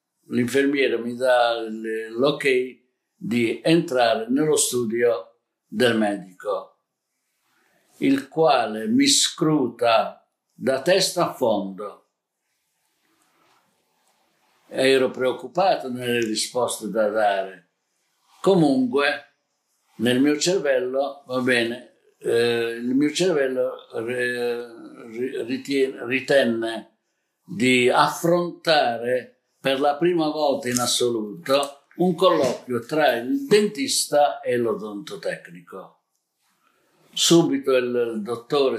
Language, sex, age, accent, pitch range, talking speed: Italian, male, 60-79, native, 115-140 Hz, 85 wpm